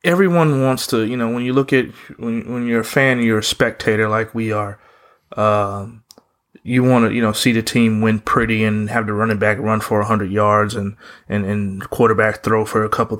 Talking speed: 225 wpm